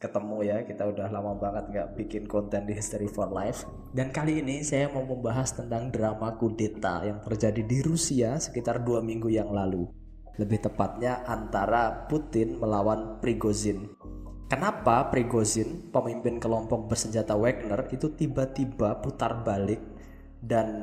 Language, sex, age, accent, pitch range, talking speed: Indonesian, male, 20-39, native, 105-125 Hz, 140 wpm